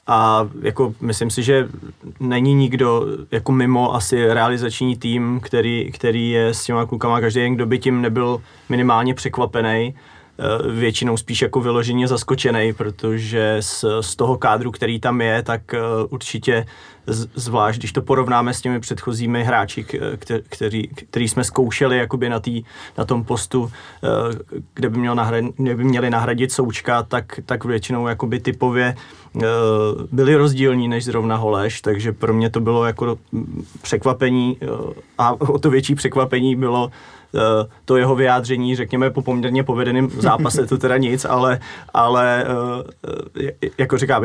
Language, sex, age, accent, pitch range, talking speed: Czech, male, 20-39, native, 115-130 Hz, 150 wpm